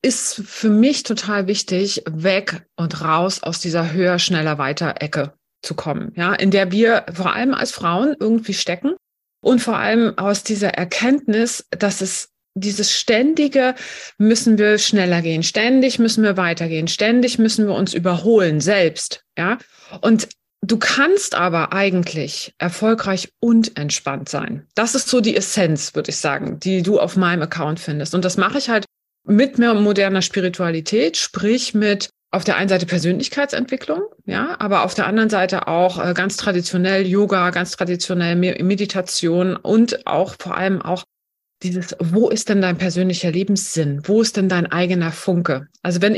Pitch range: 175-225 Hz